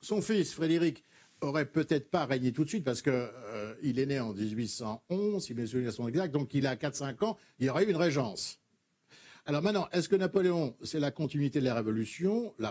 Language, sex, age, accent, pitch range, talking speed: French, male, 60-79, French, 125-175 Hz, 210 wpm